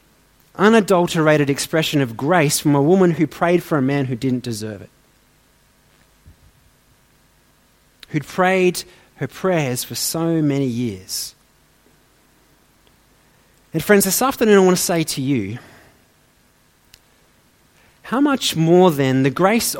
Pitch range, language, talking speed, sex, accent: 145-200 Hz, English, 120 wpm, male, Australian